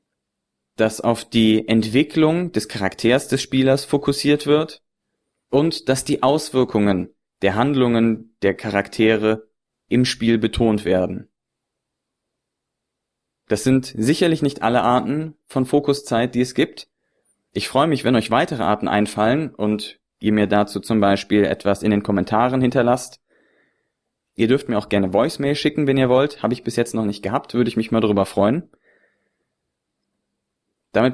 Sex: male